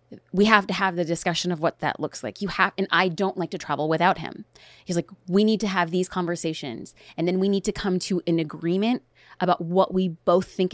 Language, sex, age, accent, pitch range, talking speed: English, female, 30-49, American, 175-220 Hz, 240 wpm